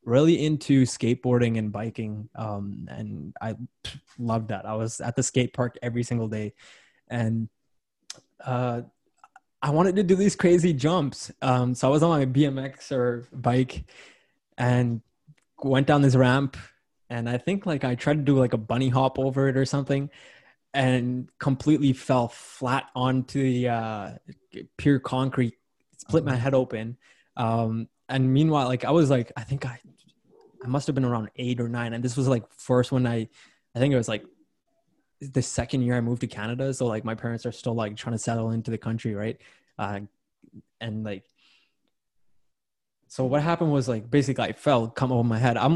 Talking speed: 180 wpm